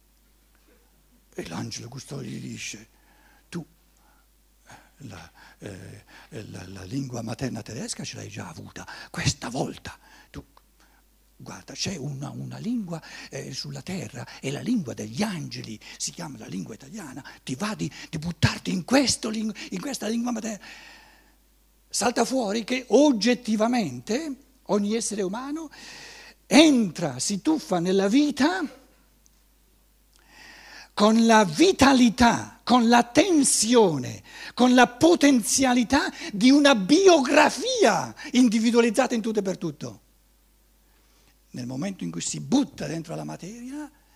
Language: Italian